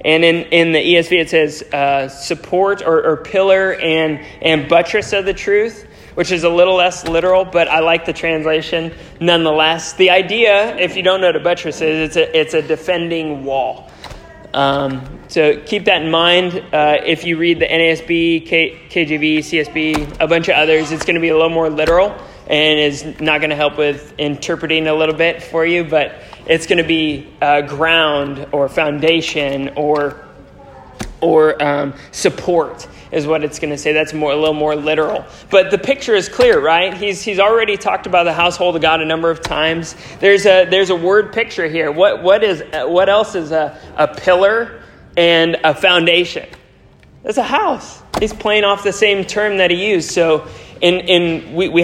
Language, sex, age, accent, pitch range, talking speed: English, male, 20-39, American, 155-180 Hz, 190 wpm